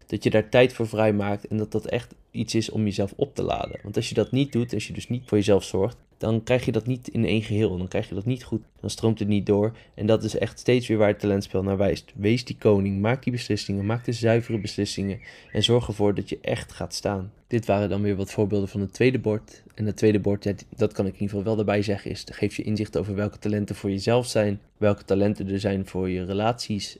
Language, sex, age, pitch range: Dutch, male, 20-39, 100-115 Hz